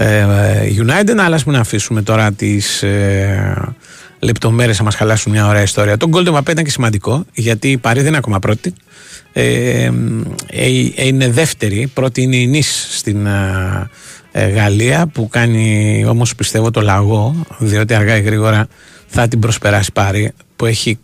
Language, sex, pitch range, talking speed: Greek, male, 105-130 Hz, 150 wpm